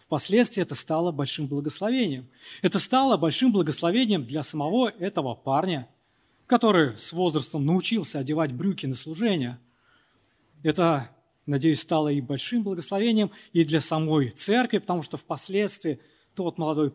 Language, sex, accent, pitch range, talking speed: Russian, male, native, 145-220 Hz, 130 wpm